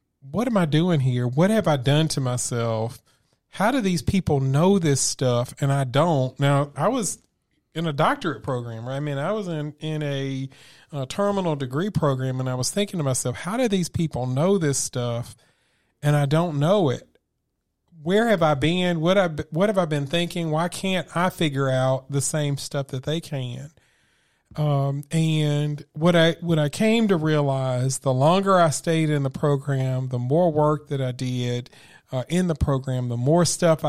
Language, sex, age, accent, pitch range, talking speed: English, male, 40-59, American, 130-160 Hz, 195 wpm